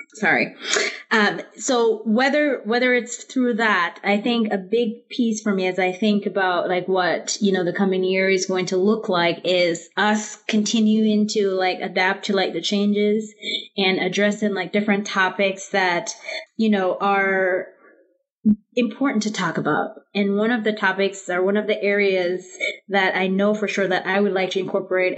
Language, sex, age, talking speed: English, female, 20-39, 180 wpm